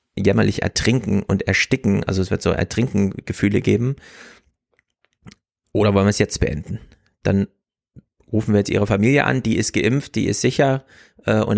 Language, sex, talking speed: German, male, 155 wpm